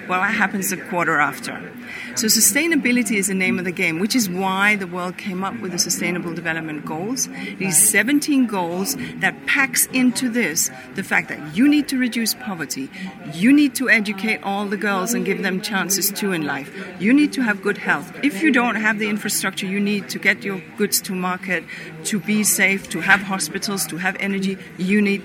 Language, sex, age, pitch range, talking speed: English, female, 40-59, 180-215 Hz, 205 wpm